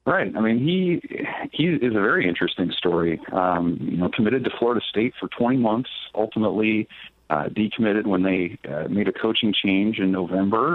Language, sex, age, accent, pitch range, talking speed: English, male, 40-59, American, 90-110 Hz, 180 wpm